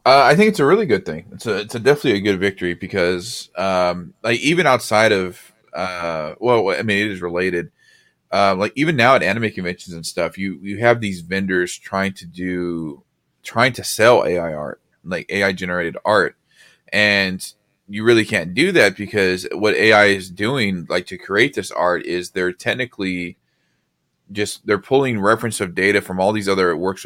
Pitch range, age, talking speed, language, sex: 90-105 Hz, 20-39, 190 wpm, English, male